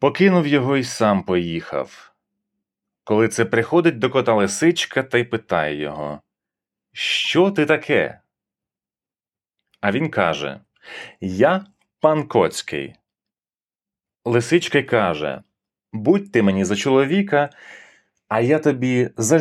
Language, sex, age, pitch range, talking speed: Ukrainian, male, 30-49, 100-145 Hz, 105 wpm